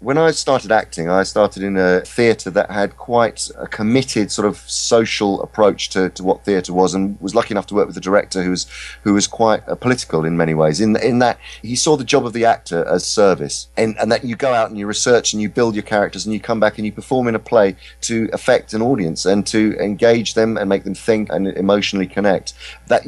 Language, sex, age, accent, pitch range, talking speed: English, male, 30-49, British, 95-120 Hz, 245 wpm